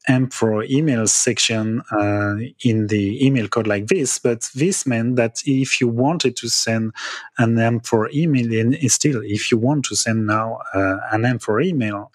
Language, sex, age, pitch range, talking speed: English, male, 30-49, 110-135 Hz, 190 wpm